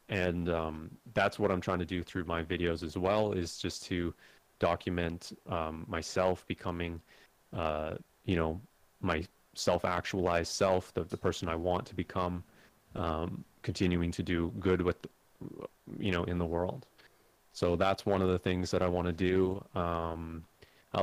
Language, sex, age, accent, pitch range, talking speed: English, male, 30-49, American, 85-95 Hz, 160 wpm